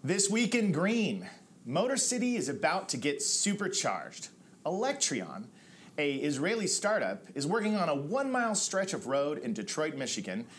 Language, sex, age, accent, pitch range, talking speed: English, male, 40-59, American, 145-210 Hz, 145 wpm